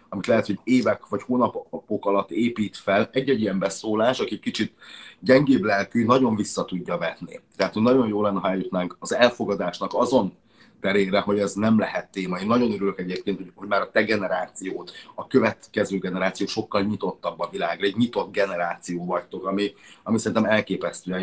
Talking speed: 170 wpm